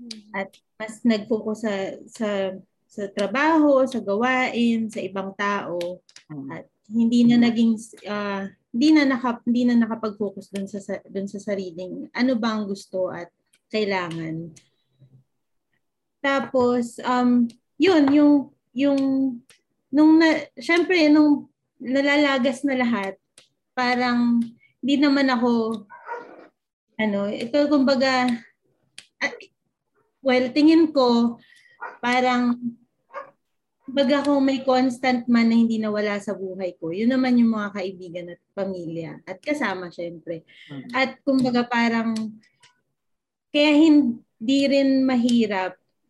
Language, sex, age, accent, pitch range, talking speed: Filipino, female, 20-39, native, 200-265 Hz, 105 wpm